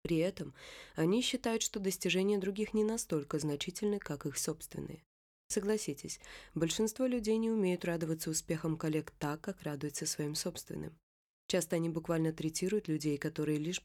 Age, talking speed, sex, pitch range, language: 20-39, 145 wpm, female, 155-205 Hz, Russian